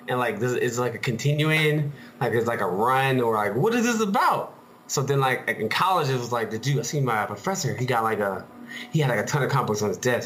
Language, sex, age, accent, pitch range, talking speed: English, male, 20-39, American, 115-155 Hz, 275 wpm